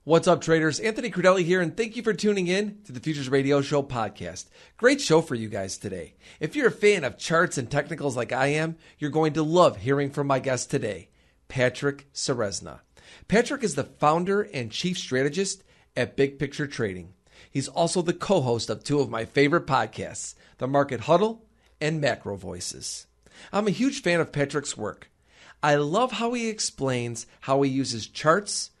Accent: American